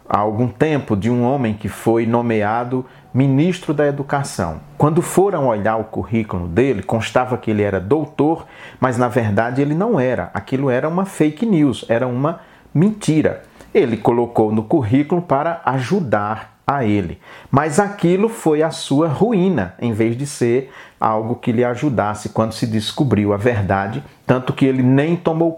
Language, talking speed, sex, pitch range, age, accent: Portuguese, 160 wpm, male, 110-140 Hz, 40-59, Brazilian